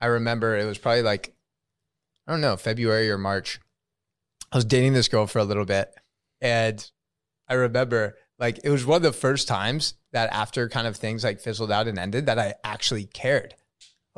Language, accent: English, American